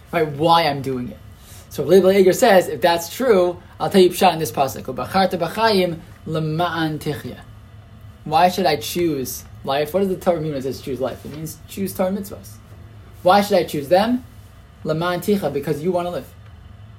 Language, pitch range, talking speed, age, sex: English, 125-185 Hz, 170 wpm, 20-39, male